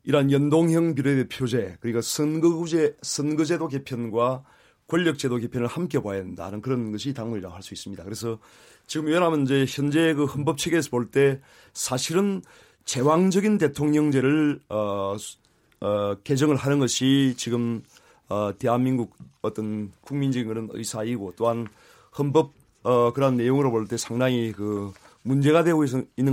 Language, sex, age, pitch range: Korean, male, 30-49, 115-145 Hz